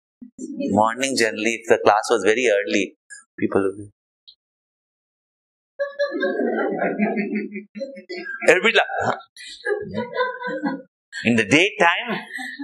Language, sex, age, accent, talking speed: English, male, 30-49, Indian, 65 wpm